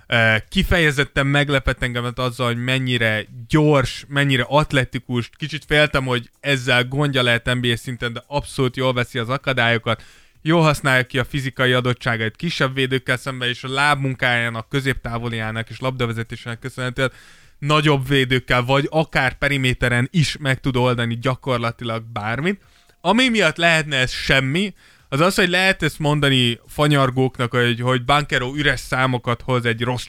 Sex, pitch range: male, 120-140 Hz